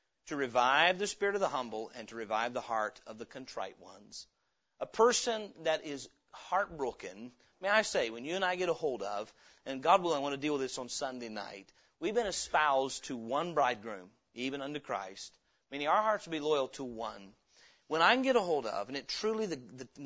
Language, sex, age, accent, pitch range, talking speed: English, male, 40-59, American, 125-170 Hz, 220 wpm